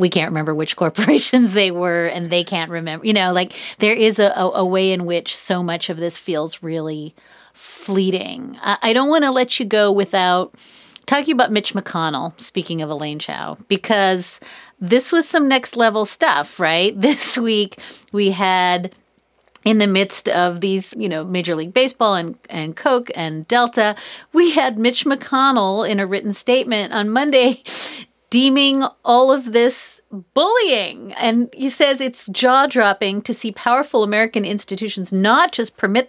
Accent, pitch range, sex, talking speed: American, 185-245 Hz, female, 165 wpm